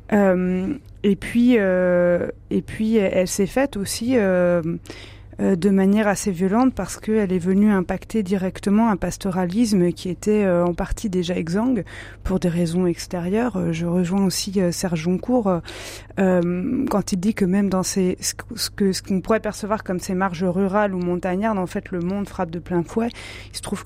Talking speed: 170 wpm